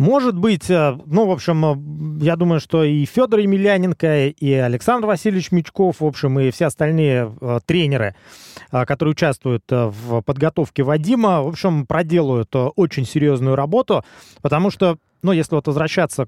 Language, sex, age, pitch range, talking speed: Russian, male, 20-39, 140-185 Hz, 140 wpm